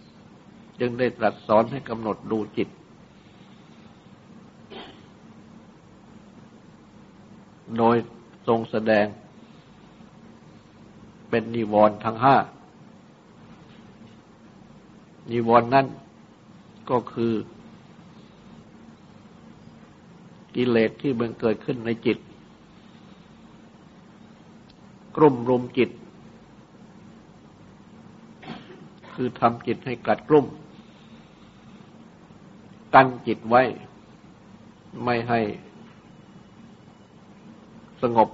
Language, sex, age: Thai, male, 60-79